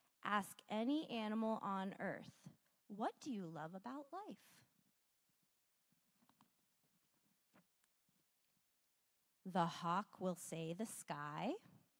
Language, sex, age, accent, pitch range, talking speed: English, female, 30-49, American, 190-250 Hz, 85 wpm